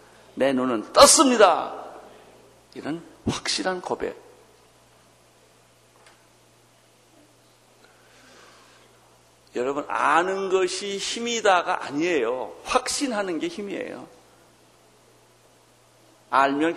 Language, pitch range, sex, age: Korean, 210-250 Hz, male, 60-79